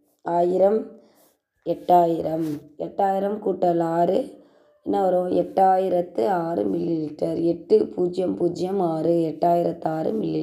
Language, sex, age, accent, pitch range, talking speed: Tamil, female, 20-39, native, 165-190 Hz, 75 wpm